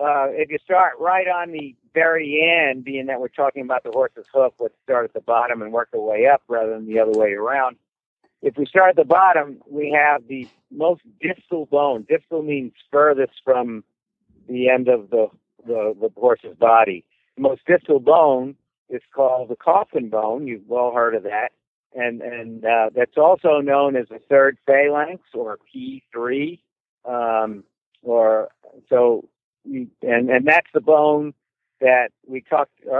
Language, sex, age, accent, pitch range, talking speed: English, male, 50-69, American, 125-170 Hz, 175 wpm